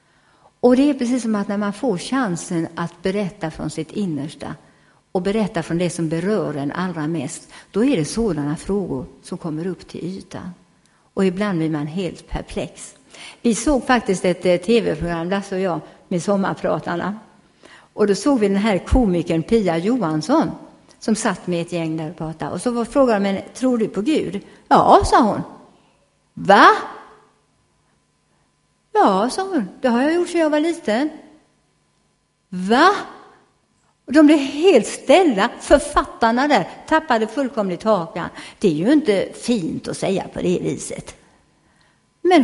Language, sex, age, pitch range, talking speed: Swedish, female, 50-69, 175-250 Hz, 155 wpm